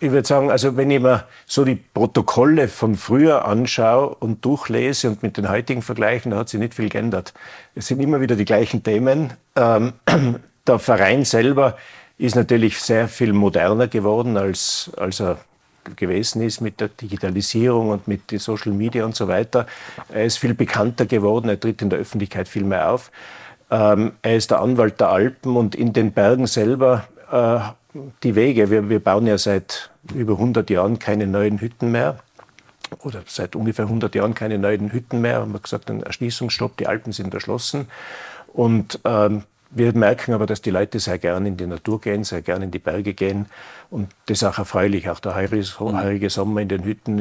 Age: 50-69